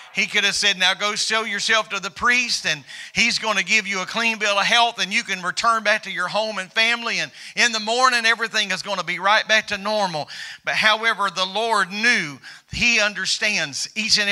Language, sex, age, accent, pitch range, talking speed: English, male, 50-69, American, 190-230 Hz, 225 wpm